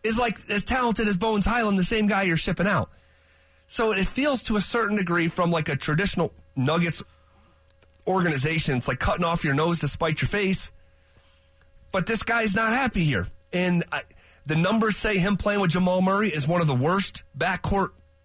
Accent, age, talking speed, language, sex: American, 30-49, 185 wpm, English, male